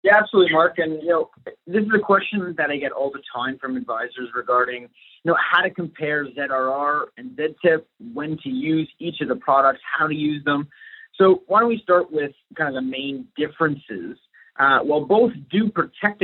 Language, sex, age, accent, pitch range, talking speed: English, male, 30-49, American, 135-175 Hz, 200 wpm